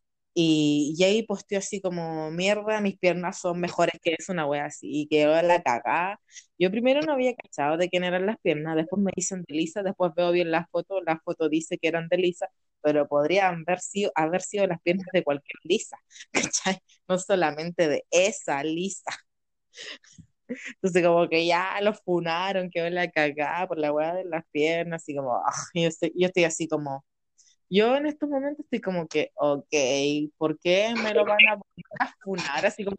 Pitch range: 165-220 Hz